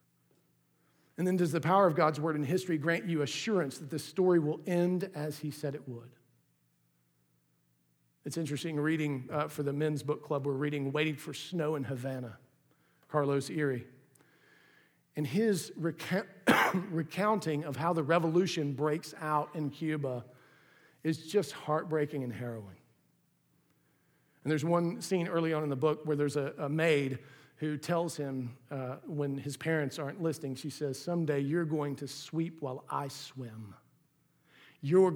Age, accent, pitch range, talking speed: 50-69, American, 135-160 Hz, 155 wpm